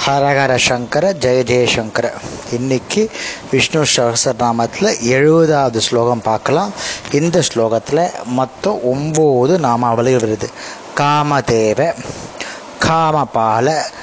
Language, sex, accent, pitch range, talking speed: Tamil, male, native, 125-175 Hz, 75 wpm